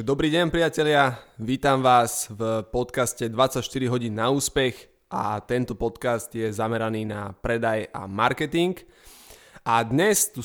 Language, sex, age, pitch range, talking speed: Slovak, male, 20-39, 115-140 Hz, 130 wpm